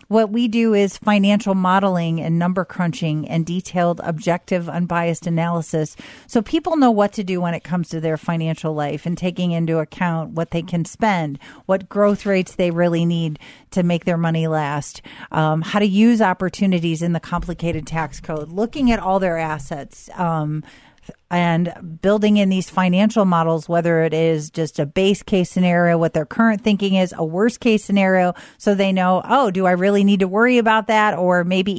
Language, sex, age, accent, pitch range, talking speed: English, female, 40-59, American, 165-205 Hz, 185 wpm